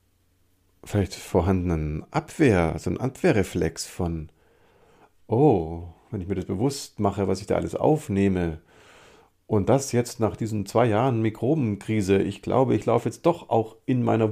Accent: German